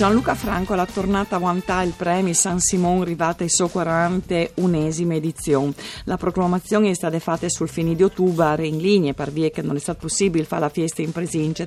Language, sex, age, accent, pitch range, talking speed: Italian, female, 40-59, native, 145-175 Hz, 195 wpm